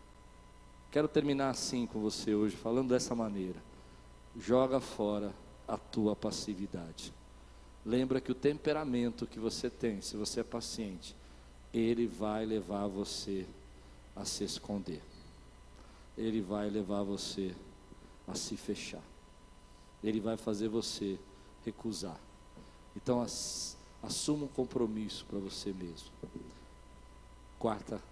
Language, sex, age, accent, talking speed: Portuguese, male, 50-69, Brazilian, 110 wpm